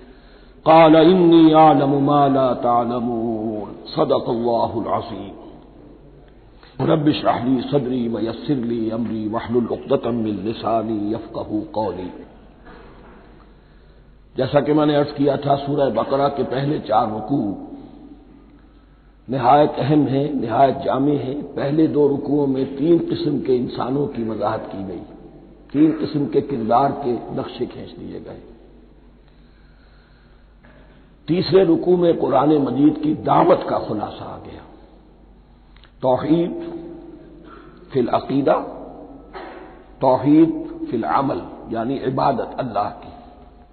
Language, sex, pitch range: Hindi, male, 115-165 Hz